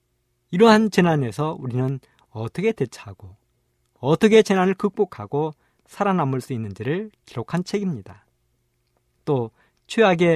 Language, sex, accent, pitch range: Korean, male, native, 105-175 Hz